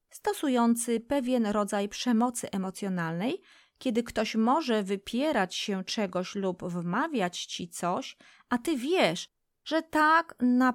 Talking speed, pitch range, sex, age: 115 wpm, 195-250 Hz, female, 30-49